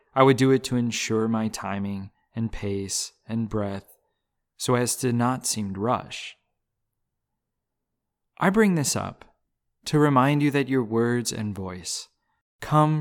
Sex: male